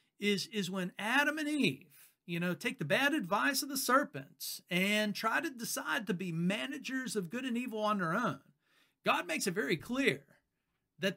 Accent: American